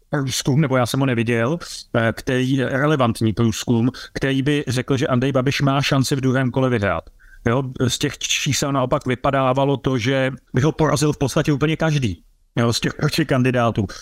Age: 30-49